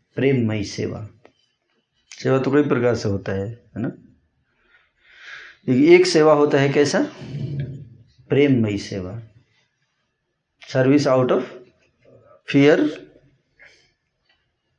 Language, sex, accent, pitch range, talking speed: Hindi, male, native, 115-140 Hz, 100 wpm